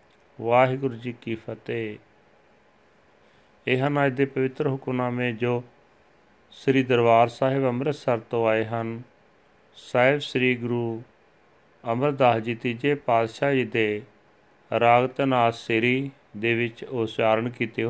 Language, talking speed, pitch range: Punjabi, 105 wpm, 110-130 Hz